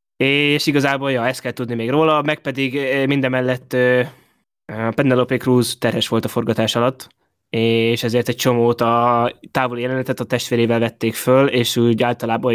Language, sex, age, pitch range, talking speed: Hungarian, male, 20-39, 115-135 Hz, 165 wpm